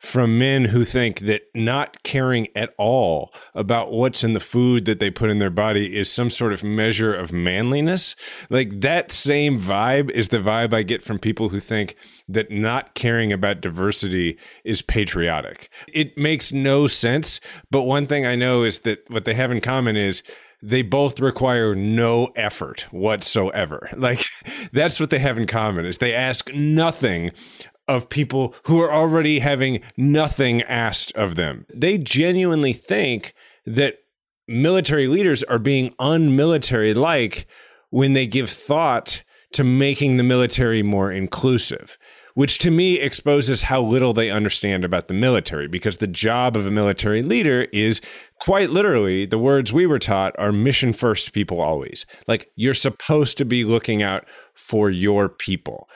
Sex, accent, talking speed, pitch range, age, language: male, American, 165 wpm, 105-135 Hz, 30-49, English